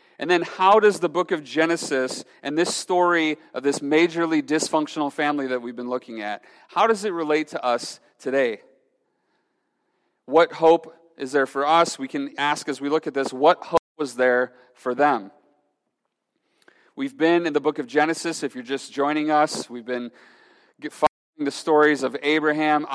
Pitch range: 135-160 Hz